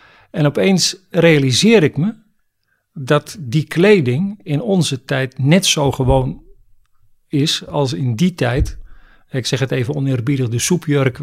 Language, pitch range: Dutch, 130-160 Hz